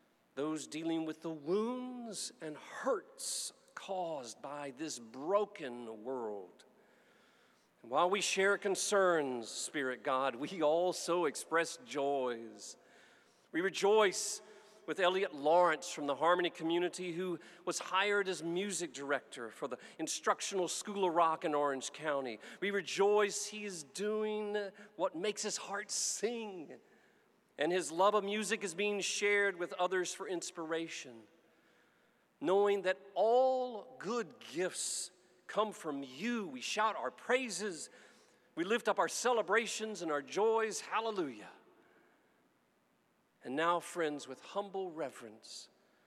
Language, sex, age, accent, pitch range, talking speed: English, male, 40-59, American, 150-205 Hz, 125 wpm